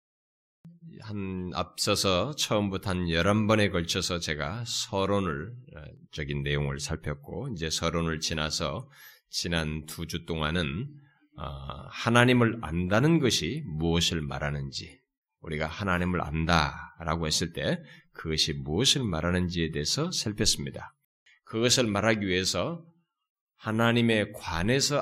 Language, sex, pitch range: Korean, male, 80-120 Hz